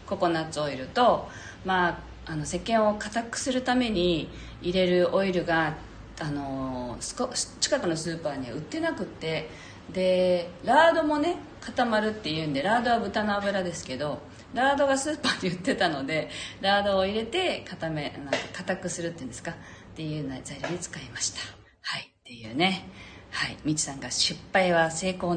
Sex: female